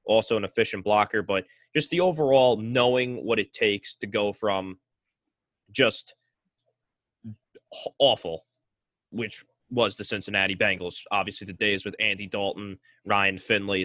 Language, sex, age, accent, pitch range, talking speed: English, male, 20-39, American, 95-120 Hz, 130 wpm